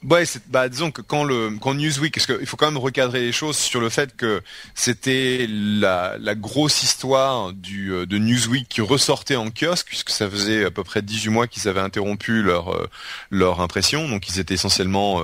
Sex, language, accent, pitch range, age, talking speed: male, French, French, 100-130 Hz, 30-49, 195 wpm